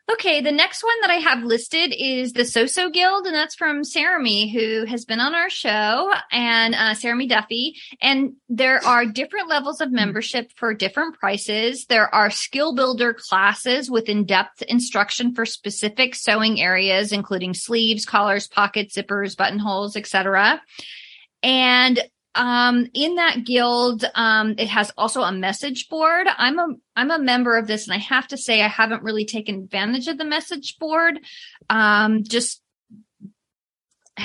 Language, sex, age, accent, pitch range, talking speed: English, female, 30-49, American, 215-275 Hz, 160 wpm